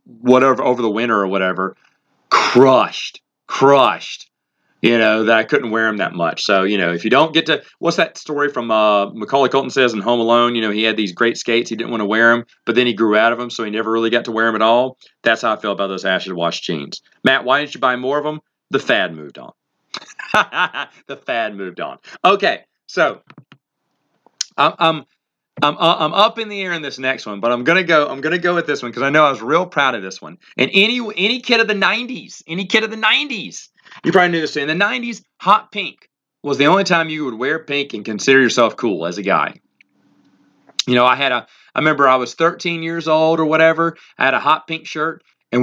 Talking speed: 240 wpm